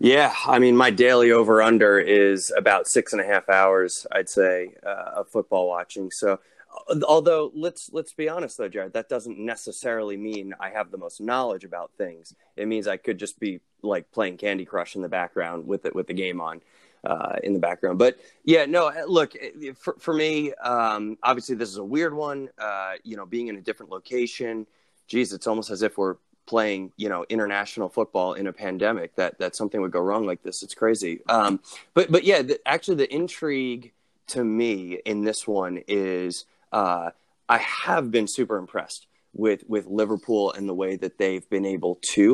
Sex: male